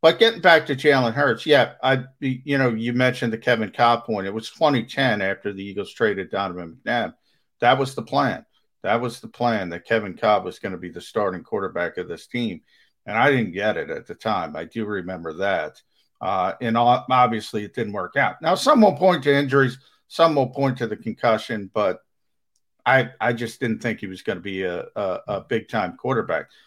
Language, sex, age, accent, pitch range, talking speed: English, male, 50-69, American, 115-150 Hz, 210 wpm